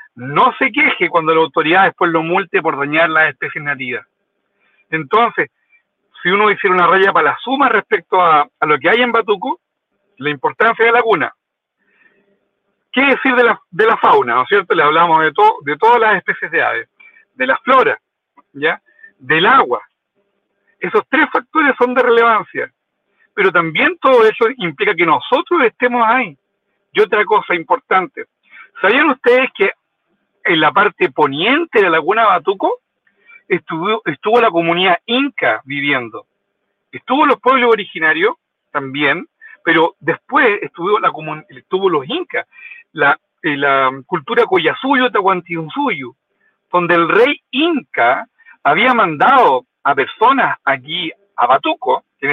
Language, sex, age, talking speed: Spanish, male, 60-79, 150 wpm